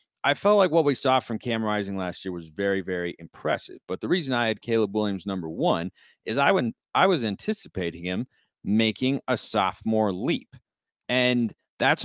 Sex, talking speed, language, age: male, 185 wpm, English, 30-49